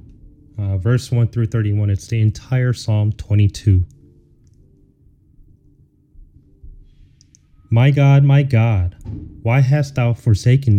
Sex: male